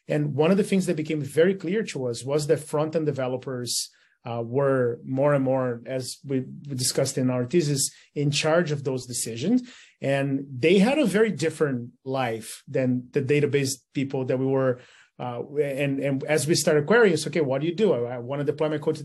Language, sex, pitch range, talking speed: English, male, 135-170 Hz, 210 wpm